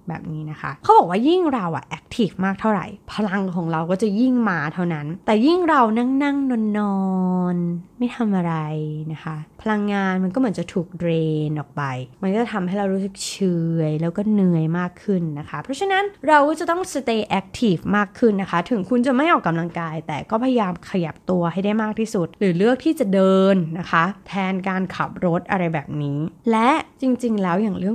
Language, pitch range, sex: Thai, 170-230 Hz, female